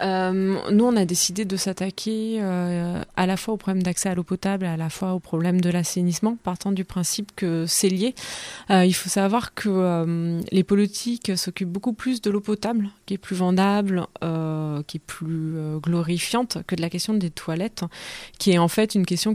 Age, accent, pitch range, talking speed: 20-39, French, 170-205 Hz, 205 wpm